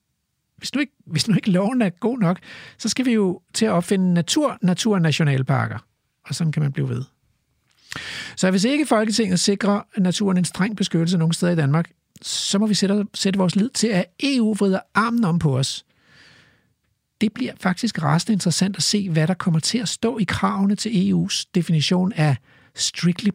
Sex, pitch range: male, 160-215 Hz